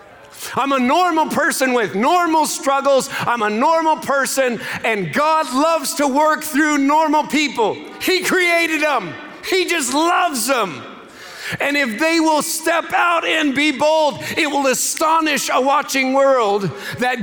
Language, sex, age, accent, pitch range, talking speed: English, male, 40-59, American, 225-300 Hz, 145 wpm